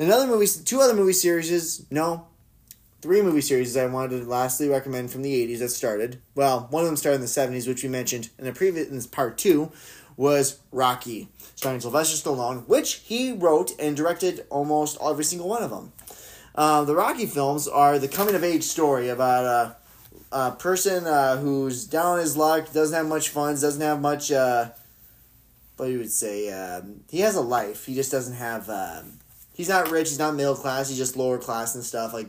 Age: 20-39